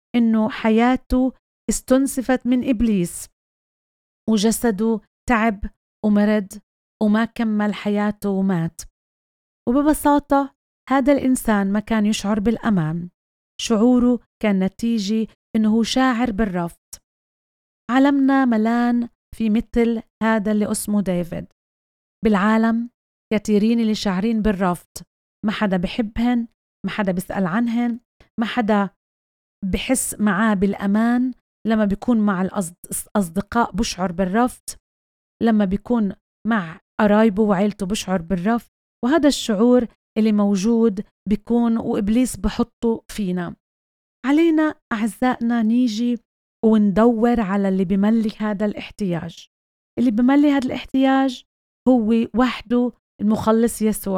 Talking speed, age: 95 wpm, 30-49